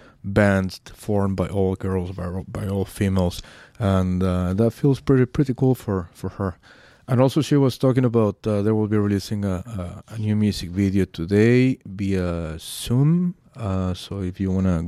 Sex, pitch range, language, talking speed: male, 90-110 Hz, English, 185 wpm